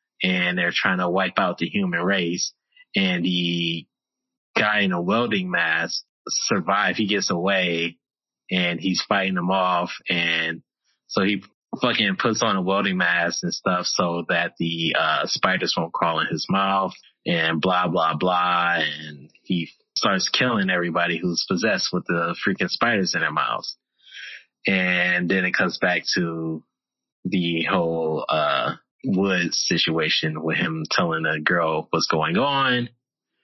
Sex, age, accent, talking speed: male, 20-39, American, 150 wpm